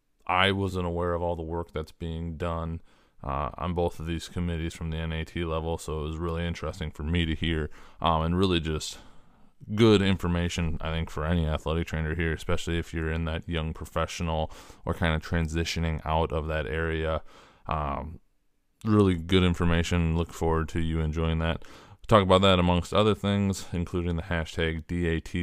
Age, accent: 20-39, American